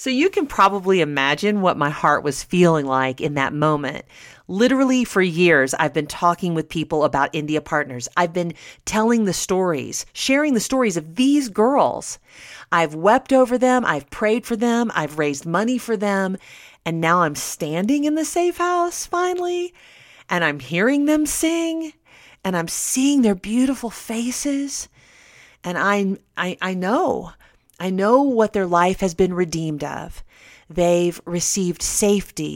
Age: 40-59